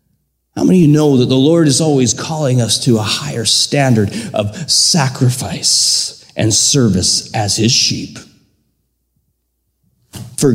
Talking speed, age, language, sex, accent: 120 wpm, 30-49, English, male, American